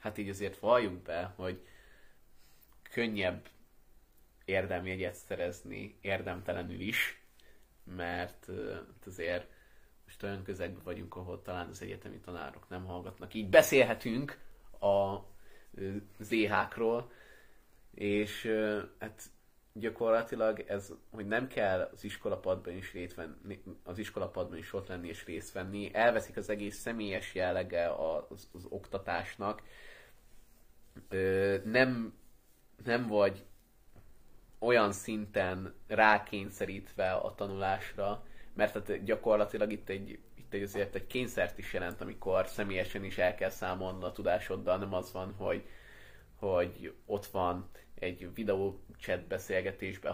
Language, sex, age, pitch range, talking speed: Hungarian, male, 20-39, 90-105 Hz, 110 wpm